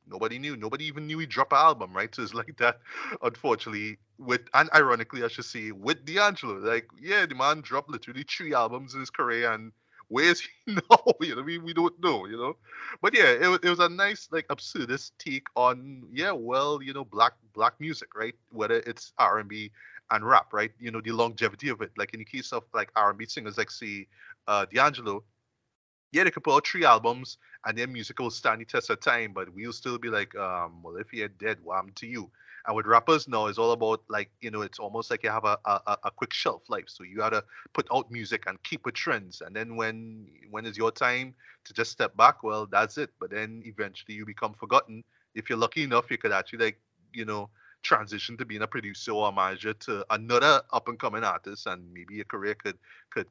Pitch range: 105-135 Hz